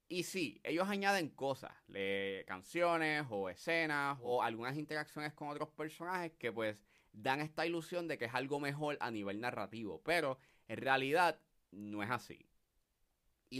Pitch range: 115-165 Hz